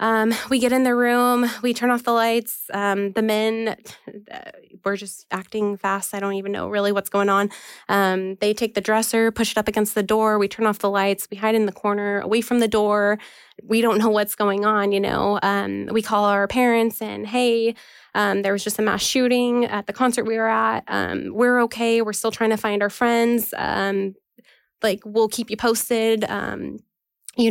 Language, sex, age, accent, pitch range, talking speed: English, female, 20-39, American, 200-225 Hz, 210 wpm